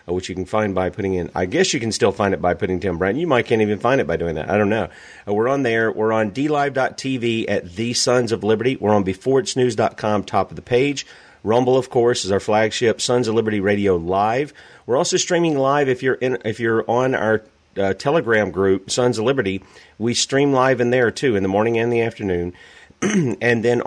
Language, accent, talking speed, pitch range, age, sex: English, American, 220 wpm, 95-120 Hz, 40-59, male